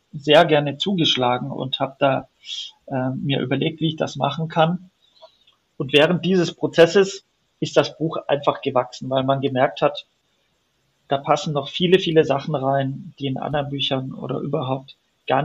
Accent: German